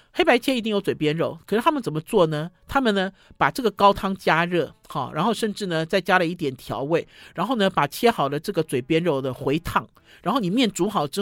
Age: 50-69